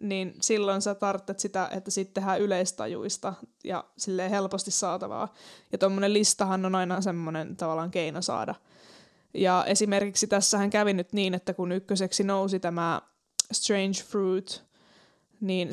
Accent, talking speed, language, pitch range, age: native, 135 wpm, Finnish, 185-205 Hz, 20-39